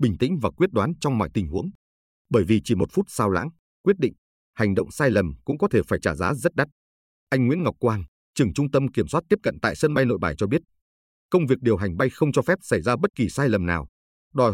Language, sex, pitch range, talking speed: Vietnamese, male, 95-140 Hz, 265 wpm